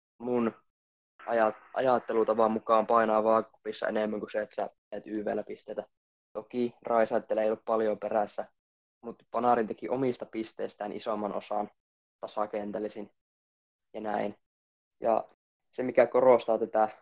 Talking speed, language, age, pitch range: 115 wpm, Finnish, 20-39, 105-115 Hz